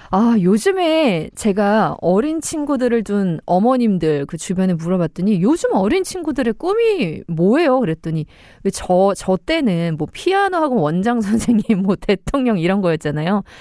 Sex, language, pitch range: female, Korean, 180-280 Hz